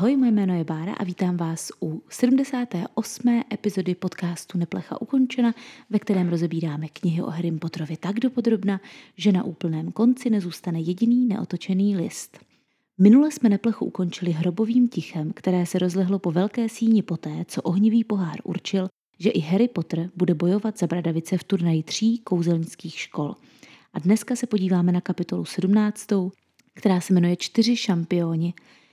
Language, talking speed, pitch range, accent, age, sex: Czech, 150 wpm, 180-220 Hz, native, 30-49, female